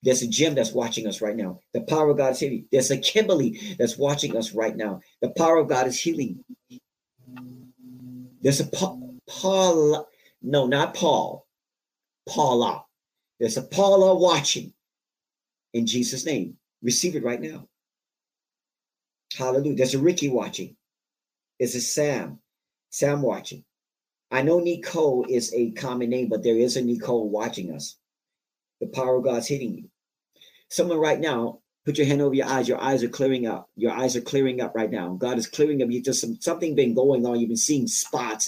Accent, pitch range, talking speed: American, 115-150 Hz, 175 wpm